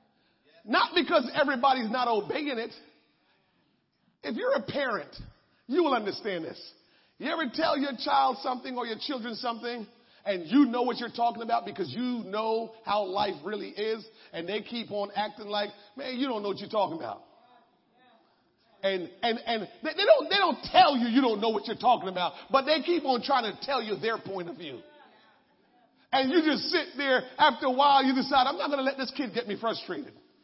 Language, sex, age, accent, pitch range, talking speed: English, male, 40-59, American, 230-310 Hz, 195 wpm